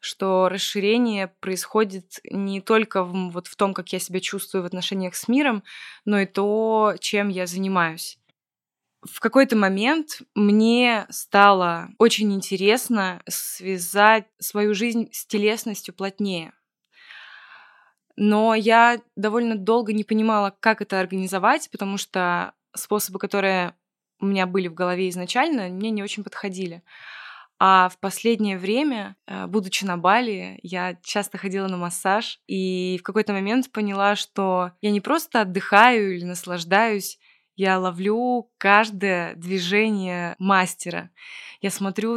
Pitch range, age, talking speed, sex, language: 185-220 Hz, 20-39, 130 wpm, female, Russian